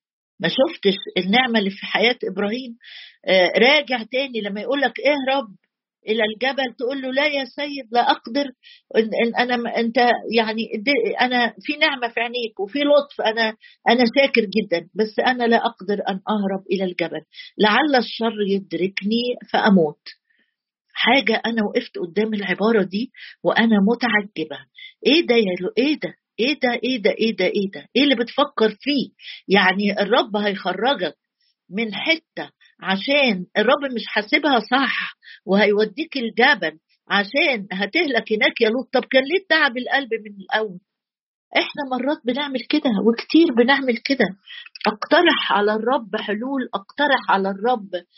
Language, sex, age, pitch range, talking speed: Arabic, female, 50-69, 205-270 Hz, 140 wpm